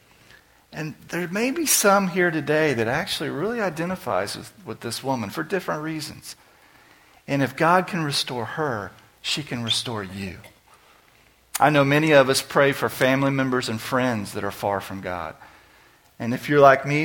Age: 40-59